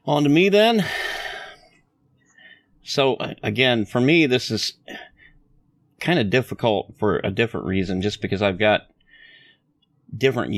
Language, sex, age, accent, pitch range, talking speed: English, male, 30-49, American, 95-110 Hz, 125 wpm